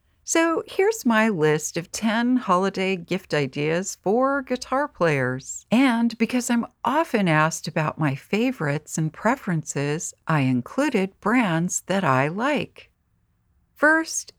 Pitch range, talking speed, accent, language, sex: 155-235 Hz, 120 wpm, American, English, female